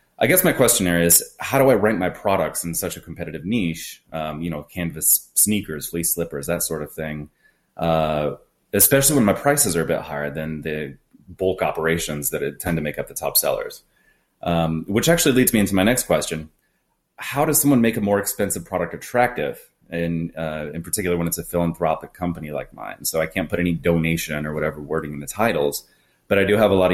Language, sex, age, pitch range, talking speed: English, male, 30-49, 75-90 Hz, 215 wpm